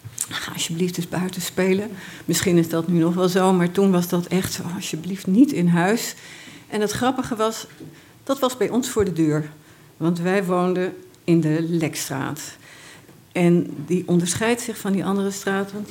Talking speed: 180 wpm